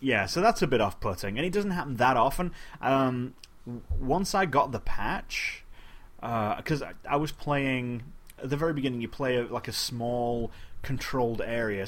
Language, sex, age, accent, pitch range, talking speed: English, male, 30-49, British, 100-130 Hz, 175 wpm